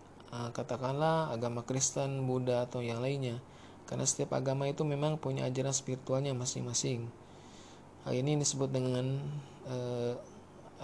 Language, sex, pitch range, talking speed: Indonesian, male, 120-140 Hz, 120 wpm